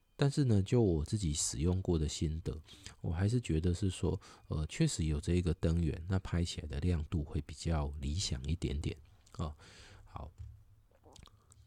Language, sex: Chinese, male